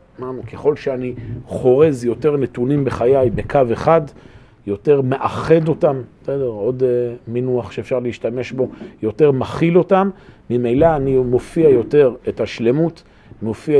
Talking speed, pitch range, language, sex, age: 115 wpm, 115-145 Hz, Hebrew, male, 40-59